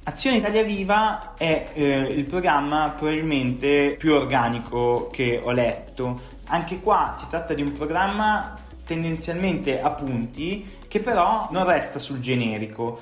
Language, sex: Italian, male